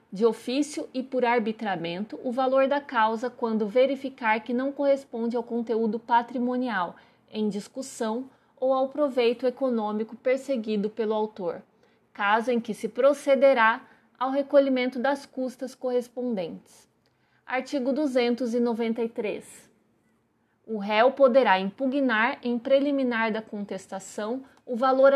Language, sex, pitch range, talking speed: Portuguese, female, 225-265 Hz, 115 wpm